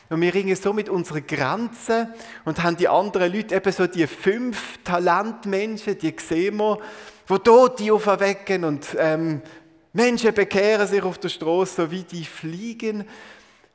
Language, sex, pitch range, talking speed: German, male, 125-185 Hz, 155 wpm